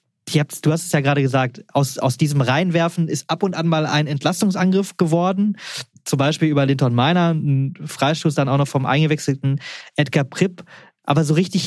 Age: 20-39